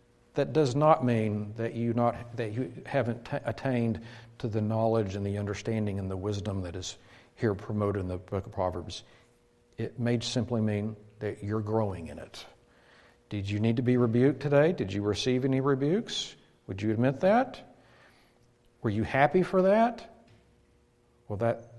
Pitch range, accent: 105-135 Hz, American